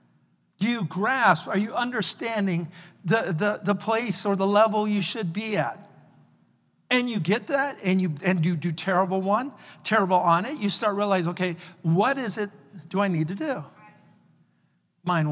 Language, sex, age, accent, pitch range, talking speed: English, male, 50-69, American, 175-250 Hz, 170 wpm